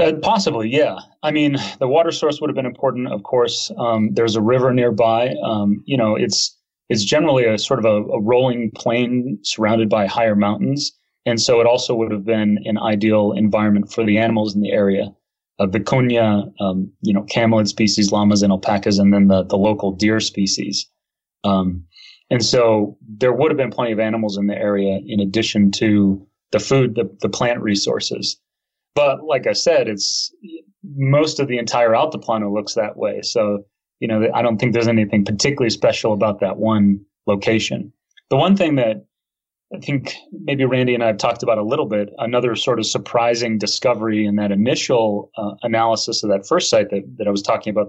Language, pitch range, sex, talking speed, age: English, 100-120 Hz, male, 195 wpm, 30-49